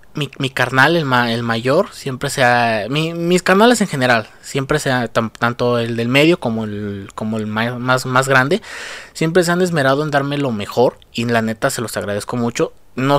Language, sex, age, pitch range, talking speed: Spanish, male, 20-39, 120-160 Hz, 205 wpm